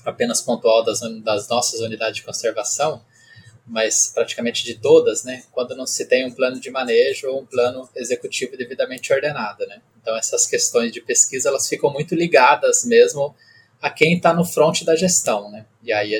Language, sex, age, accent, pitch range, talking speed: Portuguese, male, 20-39, Brazilian, 120-185 Hz, 180 wpm